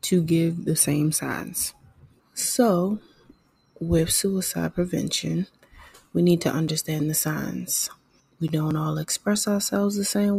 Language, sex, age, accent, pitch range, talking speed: English, female, 20-39, American, 155-175 Hz, 125 wpm